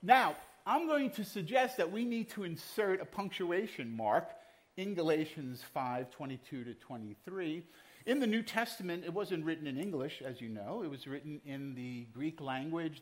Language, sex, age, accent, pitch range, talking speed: English, male, 50-69, American, 130-200 Hz, 170 wpm